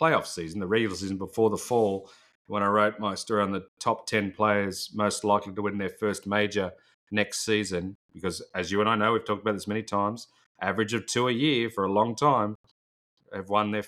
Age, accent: 30-49, Australian